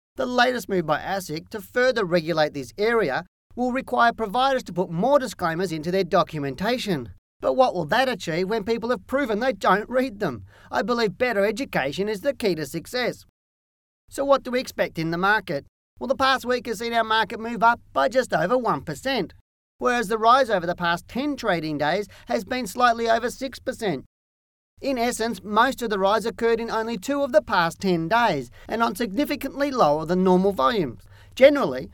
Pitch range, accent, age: 170-245 Hz, Australian, 40-59